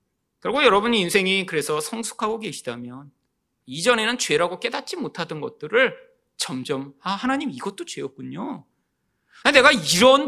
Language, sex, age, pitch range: Korean, male, 30-49, 170-240 Hz